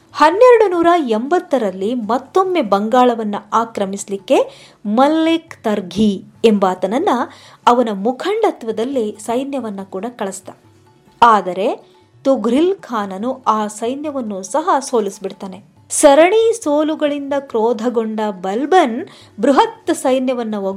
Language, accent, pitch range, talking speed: English, Indian, 205-290 Hz, 85 wpm